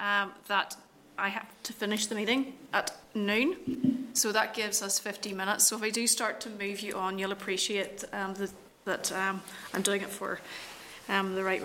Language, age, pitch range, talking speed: English, 30-49, 195-225 Hz, 190 wpm